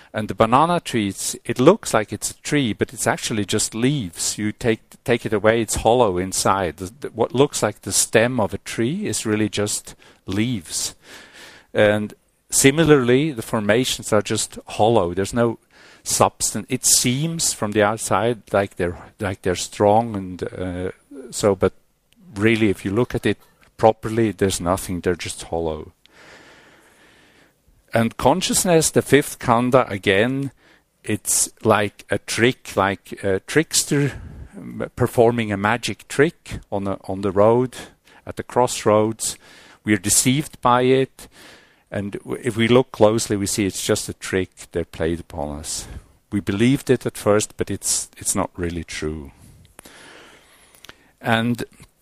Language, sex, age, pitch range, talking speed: English, male, 50-69, 95-120 Hz, 150 wpm